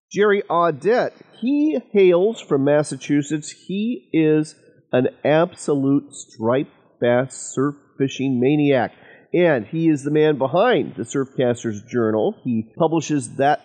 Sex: male